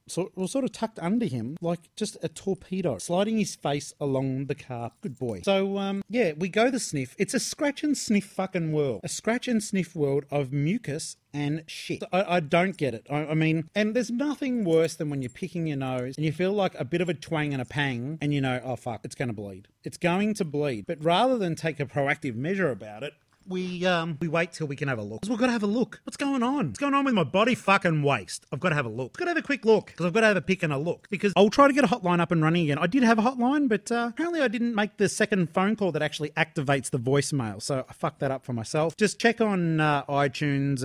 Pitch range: 145-200 Hz